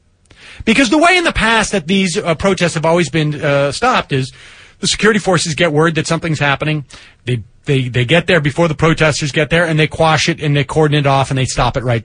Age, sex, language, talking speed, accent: 30-49, male, English, 240 wpm, American